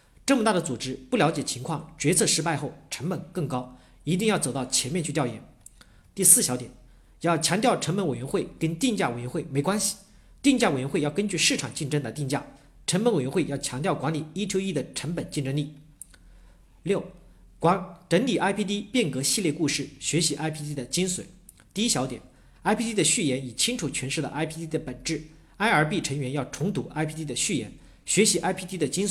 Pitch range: 140-190 Hz